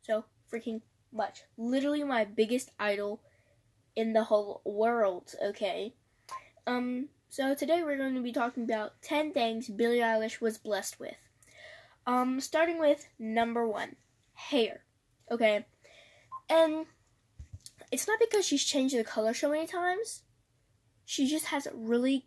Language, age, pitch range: English, 10-29, 210-290 Hz